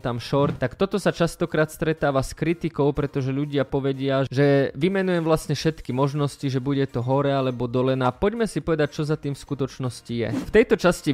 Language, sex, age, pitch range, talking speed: Polish, male, 20-39, 135-165 Hz, 200 wpm